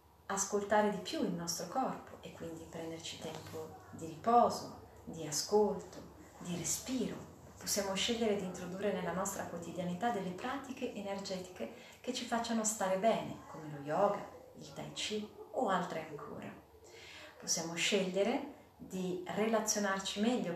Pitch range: 170-215 Hz